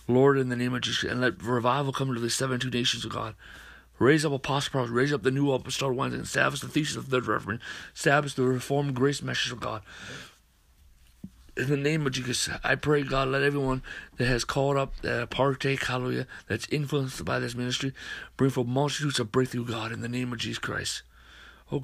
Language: English